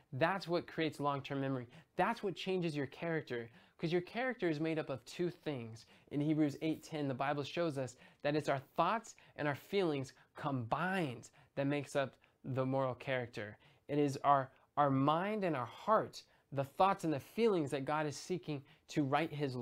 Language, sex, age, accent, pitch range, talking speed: English, male, 20-39, American, 140-170 Hz, 185 wpm